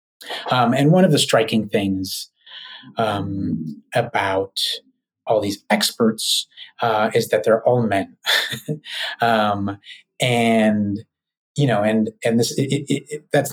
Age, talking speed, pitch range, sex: 30-49, 110 wpm, 110-130 Hz, male